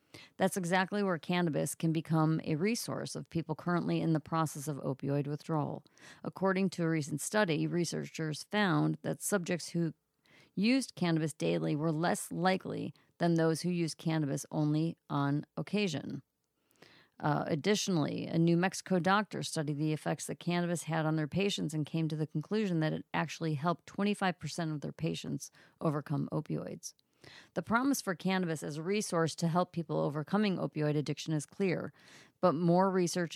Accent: American